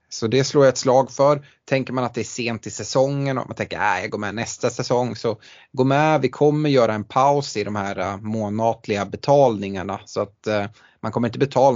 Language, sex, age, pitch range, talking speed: Swedish, male, 20-39, 105-135 Hz, 235 wpm